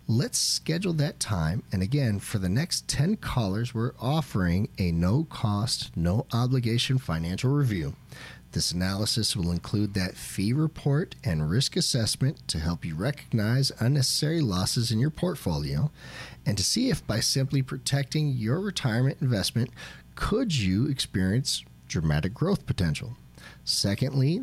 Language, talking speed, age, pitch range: English, 140 wpm, 40-59, 105-140 Hz